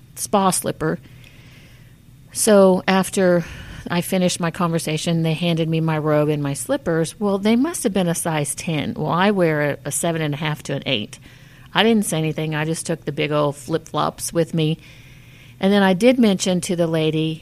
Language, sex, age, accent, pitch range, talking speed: English, female, 50-69, American, 155-200 Hz, 195 wpm